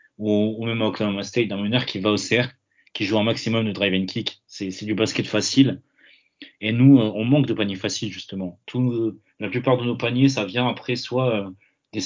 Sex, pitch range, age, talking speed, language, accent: male, 100-120 Hz, 30-49, 215 wpm, French, French